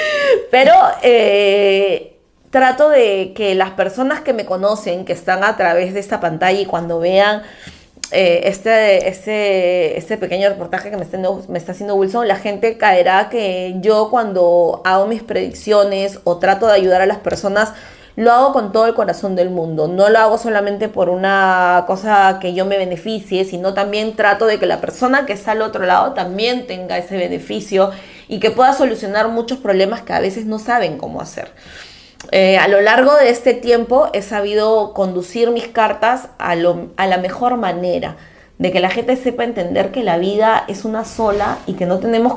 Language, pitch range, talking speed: Italian, 190-235 Hz, 180 wpm